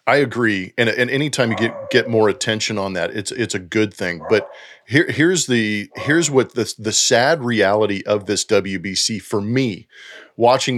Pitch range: 100-125 Hz